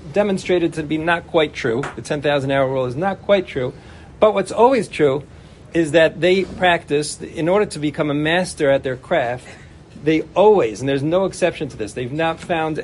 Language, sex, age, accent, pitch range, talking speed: English, male, 50-69, American, 140-175 Hz, 200 wpm